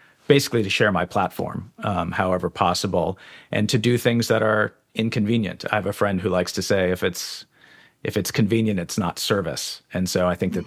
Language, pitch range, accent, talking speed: English, 95-120 Hz, American, 200 wpm